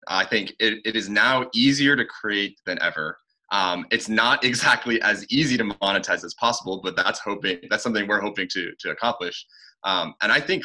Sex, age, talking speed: male, 20-39, 195 wpm